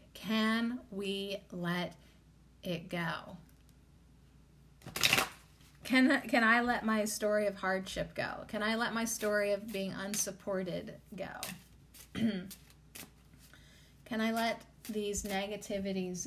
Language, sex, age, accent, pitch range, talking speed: English, female, 30-49, American, 190-220 Hz, 105 wpm